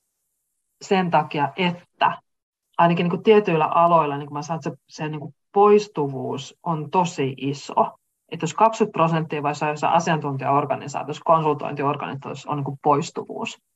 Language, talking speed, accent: Finnish, 120 wpm, native